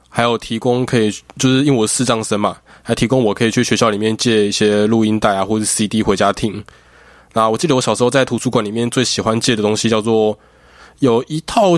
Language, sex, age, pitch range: Chinese, male, 20-39, 110-140 Hz